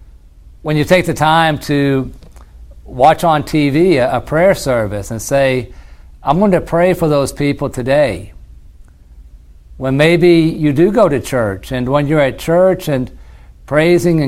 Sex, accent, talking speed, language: male, American, 150 wpm, English